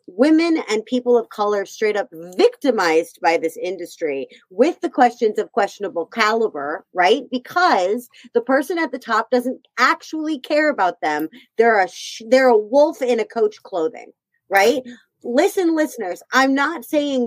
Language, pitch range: English, 215-310 Hz